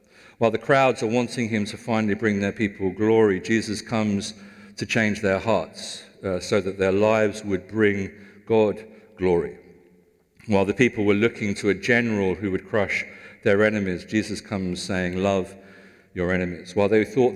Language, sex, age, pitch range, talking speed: English, male, 50-69, 90-105 Hz, 170 wpm